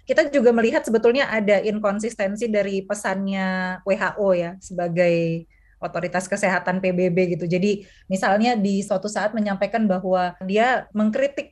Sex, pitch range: female, 185-220 Hz